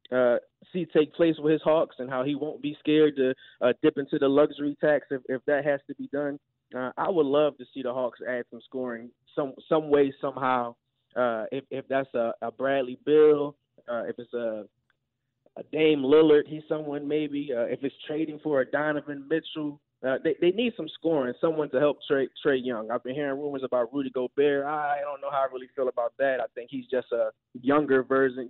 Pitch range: 130-150 Hz